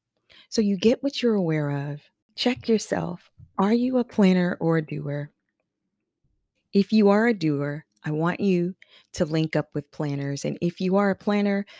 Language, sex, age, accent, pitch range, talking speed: English, female, 30-49, American, 145-200 Hz, 180 wpm